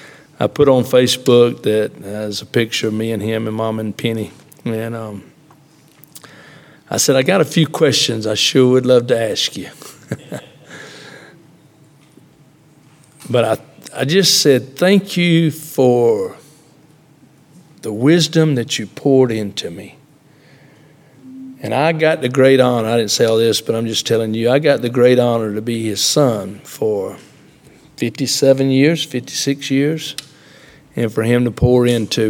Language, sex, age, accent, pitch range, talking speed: English, male, 60-79, American, 115-155 Hz, 155 wpm